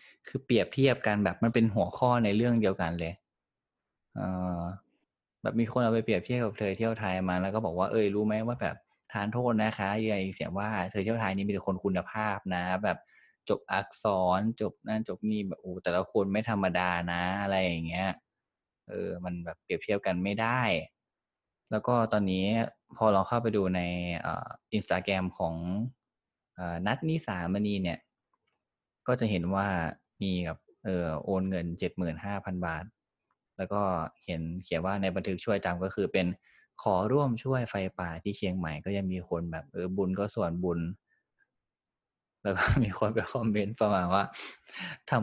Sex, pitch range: male, 90-110 Hz